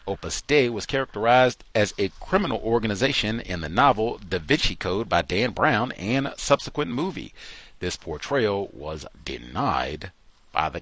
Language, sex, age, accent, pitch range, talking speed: English, male, 50-69, American, 90-125 Hz, 145 wpm